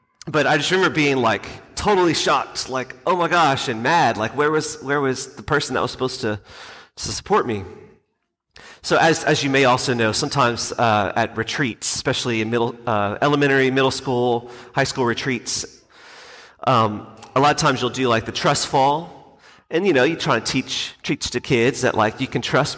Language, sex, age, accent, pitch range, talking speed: English, male, 30-49, American, 115-145 Hz, 200 wpm